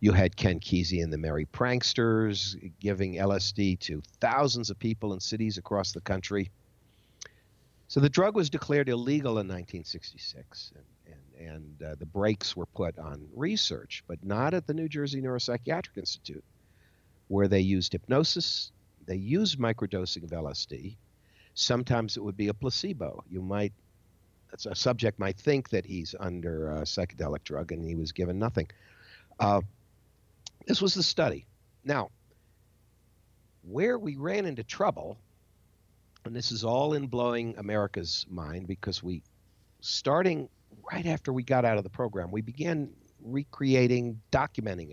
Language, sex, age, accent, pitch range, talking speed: English, male, 60-79, American, 95-125 Hz, 145 wpm